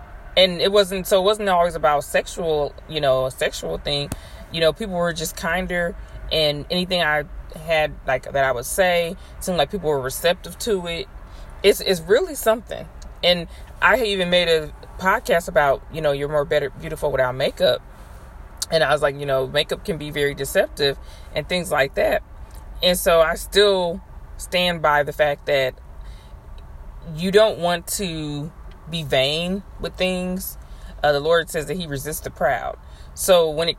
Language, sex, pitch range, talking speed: English, female, 140-175 Hz, 175 wpm